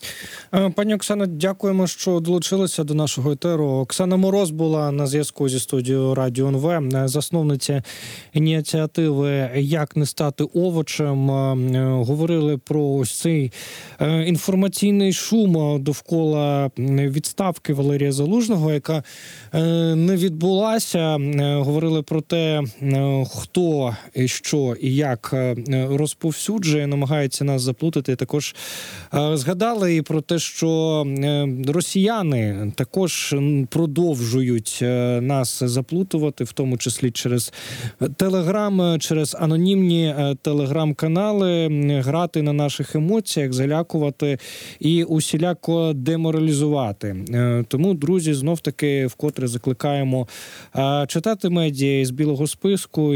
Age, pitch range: 20-39, 135-165 Hz